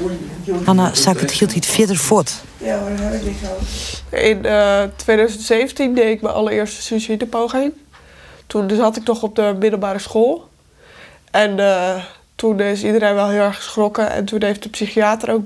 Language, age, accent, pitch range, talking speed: Dutch, 20-39, Dutch, 195-220 Hz, 170 wpm